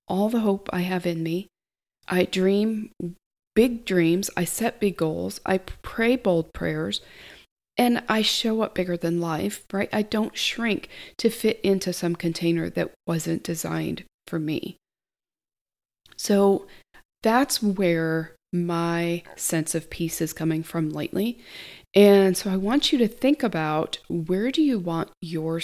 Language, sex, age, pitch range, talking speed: English, female, 40-59, 165-210 Hz, 150 wpm